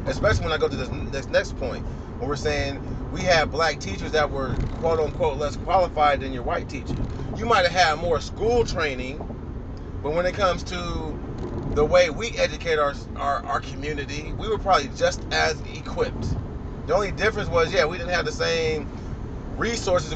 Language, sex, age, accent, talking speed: English, male, 30-49, American, 185 wpm